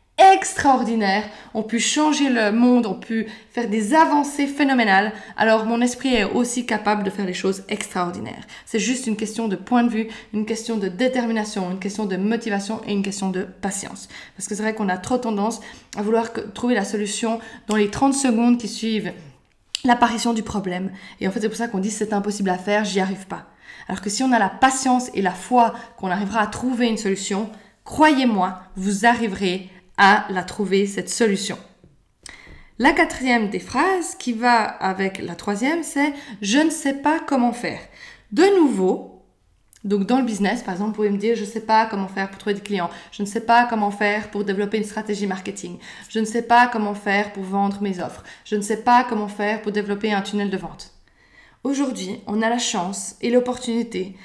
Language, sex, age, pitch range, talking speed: French, female, 20-39, 200-240 Hz, 210 wpm